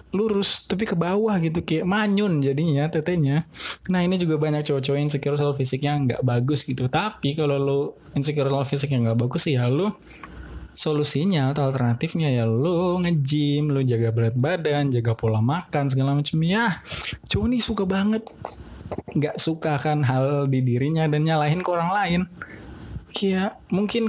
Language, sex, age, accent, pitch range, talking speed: Indonesian, male, 20-39, native, 130-160 Hz, 145 wpm